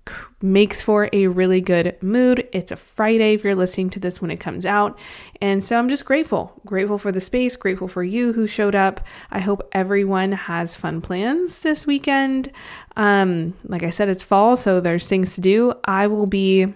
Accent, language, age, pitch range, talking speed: American, English, 20-39, 185-215 Hz, 195 wpm